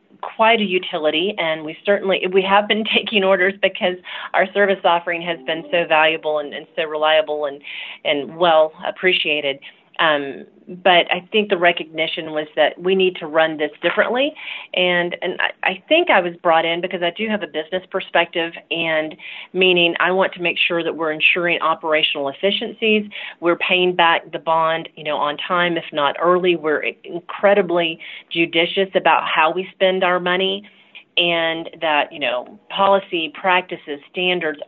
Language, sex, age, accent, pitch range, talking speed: English, female, 40-59, American, 160-185 Hz, 170 wpm